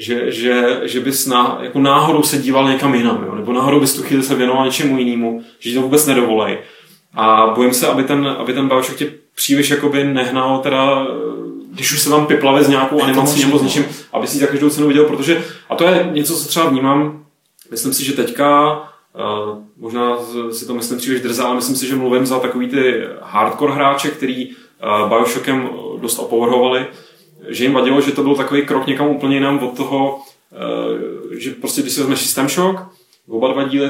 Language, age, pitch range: Czech, 20-39, 125-145 Hz